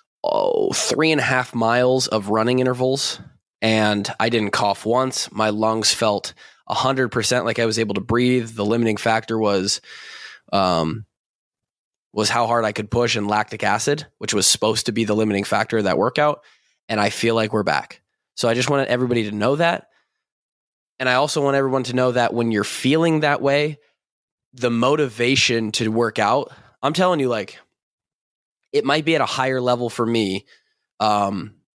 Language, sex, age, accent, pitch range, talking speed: English, male, 20-39, American, 110-130 Hz, 185 wpm